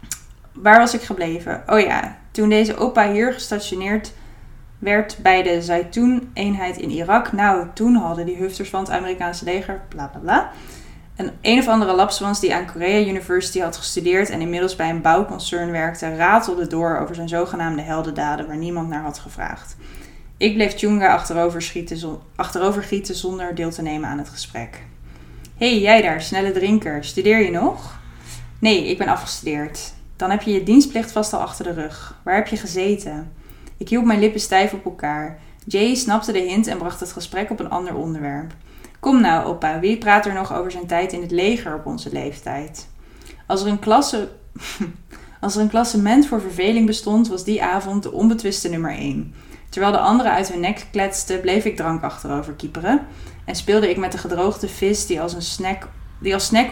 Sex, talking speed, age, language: female, 185 wpm, 20-39, Dutch